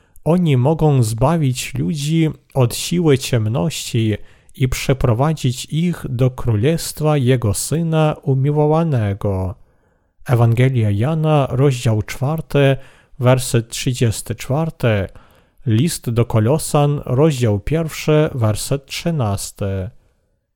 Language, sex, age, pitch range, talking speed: Polish, male, 40-59, 115-150 Hz, 80 wpm